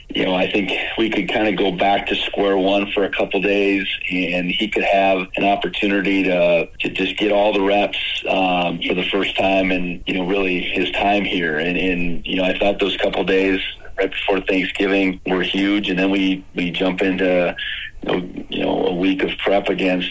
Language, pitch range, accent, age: English, 90-100 Hz, American, 40-59